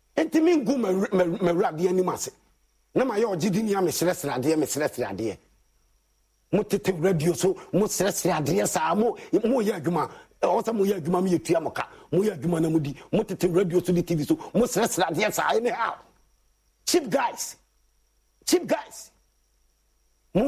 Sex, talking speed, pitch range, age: male, 140 wpm, 180-275 Hz, 50-69